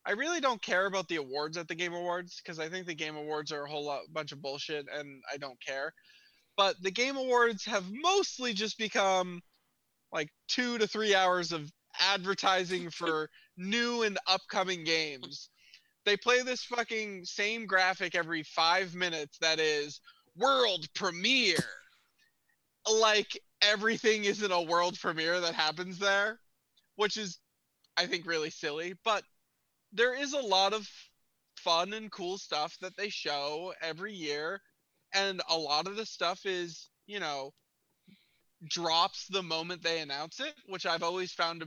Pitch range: 155-210 Hz